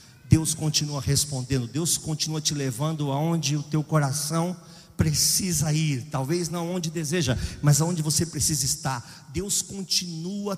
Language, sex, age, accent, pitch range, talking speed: Portuguese, male, 50-69, Brazilian, 145-225 Hz, 135 wpm